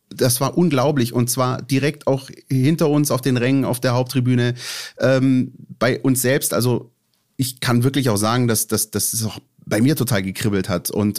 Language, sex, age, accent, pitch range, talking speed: German, male, 30-49, German, 115-135 Hz, 195 wpm